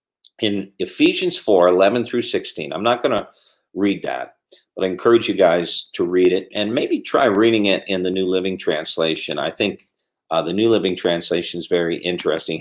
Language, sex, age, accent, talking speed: English, male, 50-69, American, 190 wpm